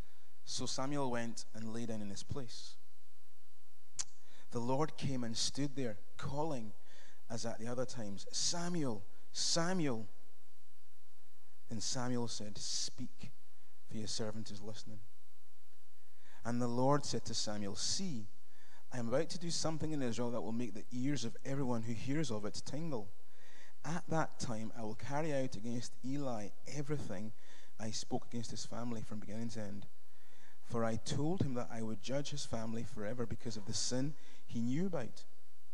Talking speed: 160 wpm